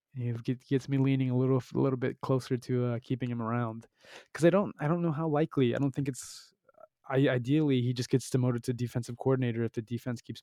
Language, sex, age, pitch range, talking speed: English, male, 20-39, 120-135 Hz, 230 wpm